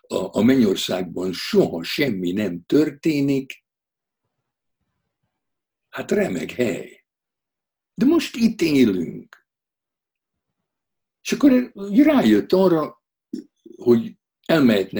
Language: Hungarian